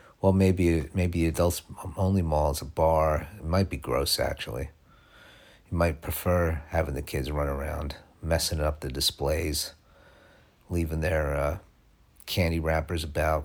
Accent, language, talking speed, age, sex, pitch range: American, English, 145 wpm, 50-69, male, 80-105 Hz